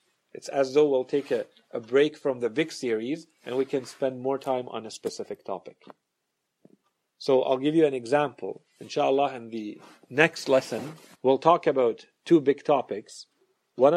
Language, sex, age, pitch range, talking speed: English, male, 40-59, 125-150 Hz, 170 wpm